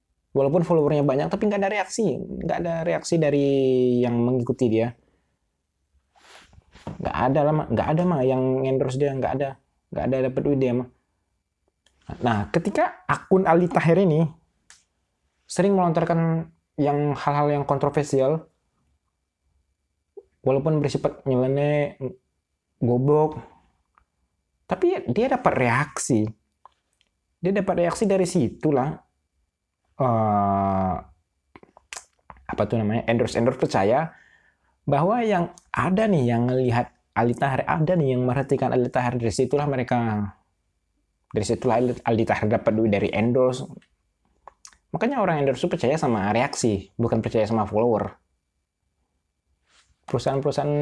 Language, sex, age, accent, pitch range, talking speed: Indonesian, male, 20-39, native, 95-145 Hz, 115 wpm